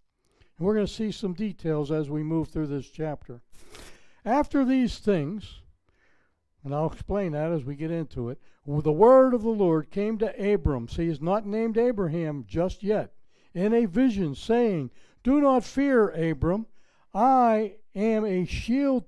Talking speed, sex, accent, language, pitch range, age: 165 wpm, male, American, English, 160-230 Hz, 60-79